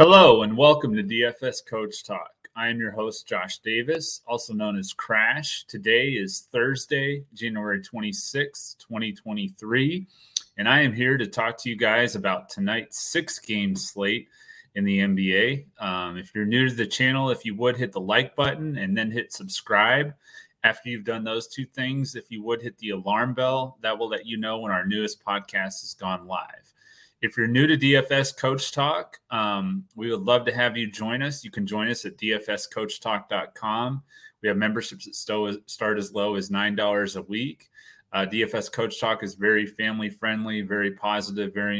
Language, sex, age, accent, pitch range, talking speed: English, male, 30-49, American, 100-130 Hz, 180 wpm